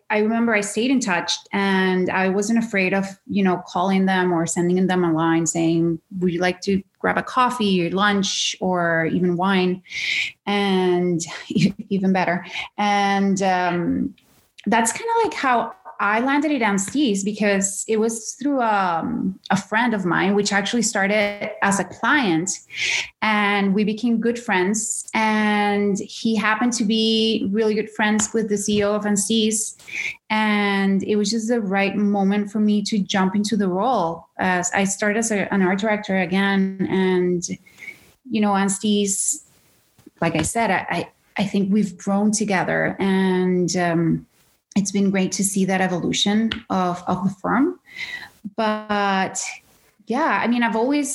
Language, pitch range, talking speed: English, 190-220 Hz, 160 wpm